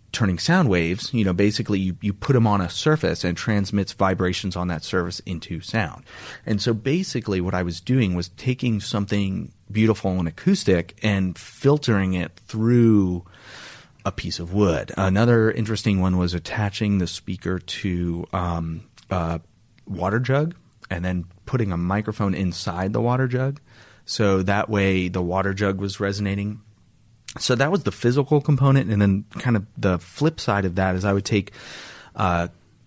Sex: male